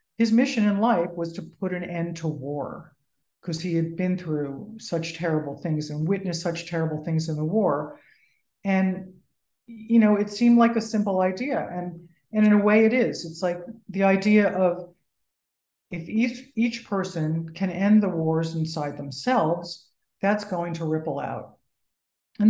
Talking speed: 170 wpm